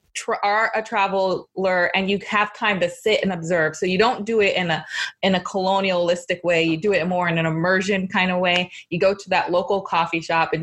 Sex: female